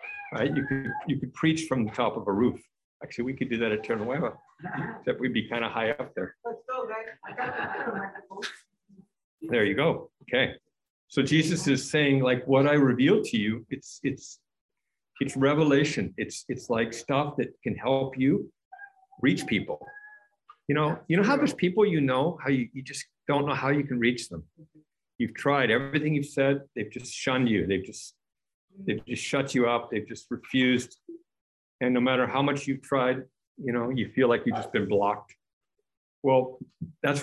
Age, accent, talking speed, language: 50-69, American, 180 wpm, English